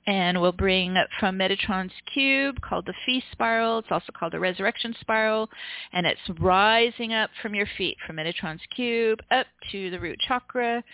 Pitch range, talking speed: 190-250 Hz, 175 wpm